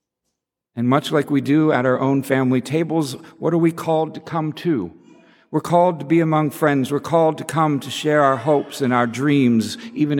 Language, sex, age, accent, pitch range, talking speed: English, male, 60-79, American, 115-140 Hz, 205 wpm